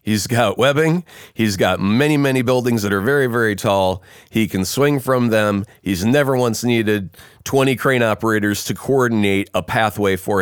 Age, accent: 30-49, American